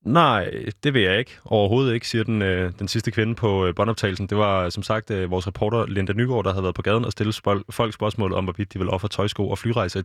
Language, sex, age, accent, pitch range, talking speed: Danish, male, 20-39, native, 95-115 Hz, 265 wpm